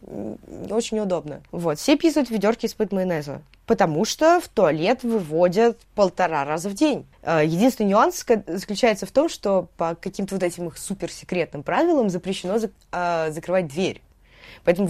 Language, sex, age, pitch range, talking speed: Russian, female, 20-39, 165-215 Hz, 150 wpm